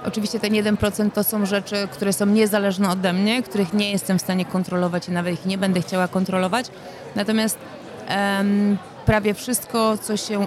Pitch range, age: 180-210 Hz, 30-49